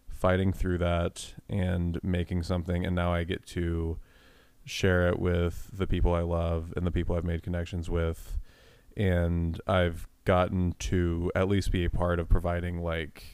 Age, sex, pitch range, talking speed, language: 20-39, male, 85-95 Hz, 165 wpm, English